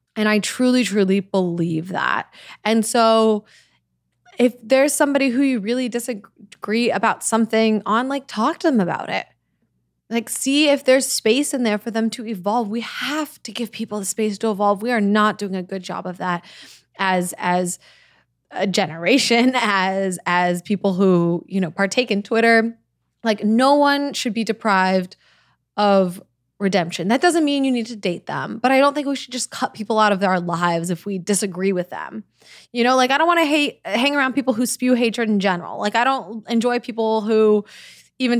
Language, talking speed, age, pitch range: English, 190 wpm, 20-39, 195-250 Hz